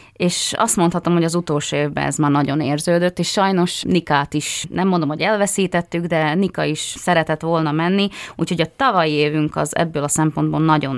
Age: 20-39